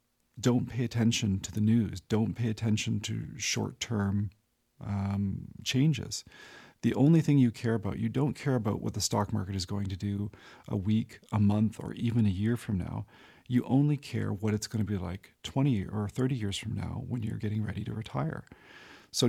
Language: English